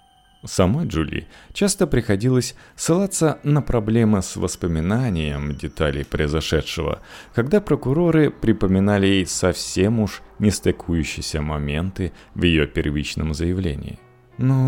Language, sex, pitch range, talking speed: Russian, male, 80-130 Hz, 100 wpm